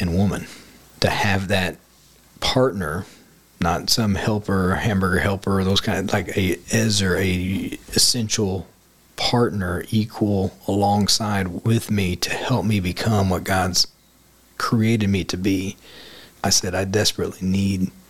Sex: male